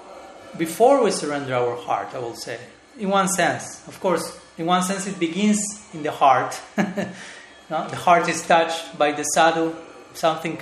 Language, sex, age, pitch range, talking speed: English, male, 30-49, 145-175 Hz, 170 wpm